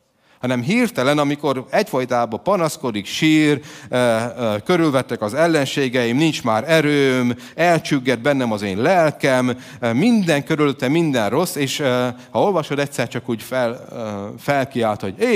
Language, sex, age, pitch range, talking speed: Hungarian, male, 30-49, 120-150 Hz, 140 wpm